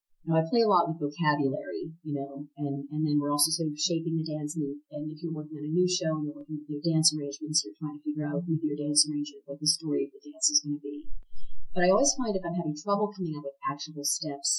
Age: 40-59